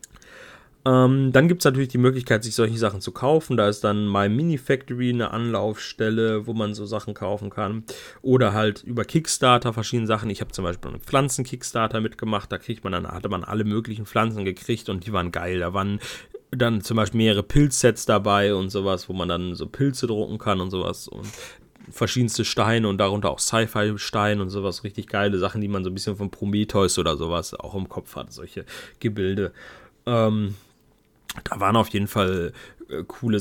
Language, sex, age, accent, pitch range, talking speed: German, male, 30-49, German, 100-120 Hz, 190 wpm